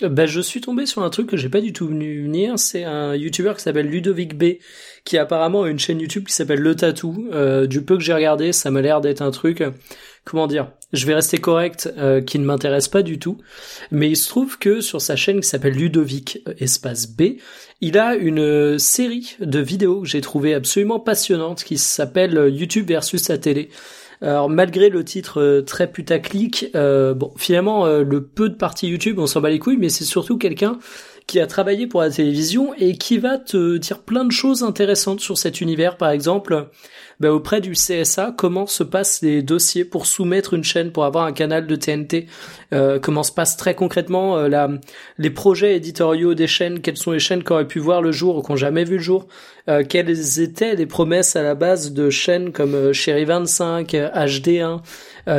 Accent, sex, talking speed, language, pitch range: French, male, 215 wpm, French, 150-195 Hz